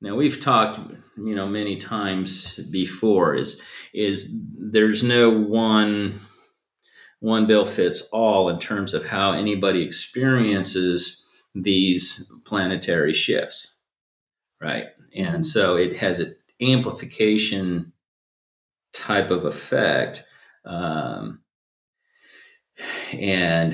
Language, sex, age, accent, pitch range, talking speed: English, male, 40-59, American, 85-105 Hz, 95 wpm